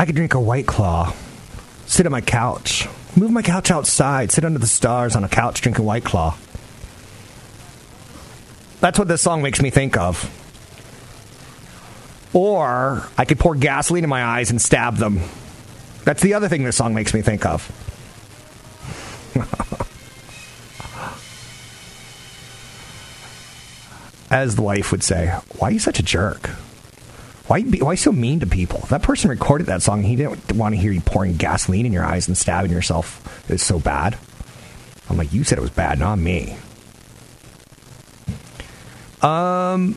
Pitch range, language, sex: 100-135 Hz, English, male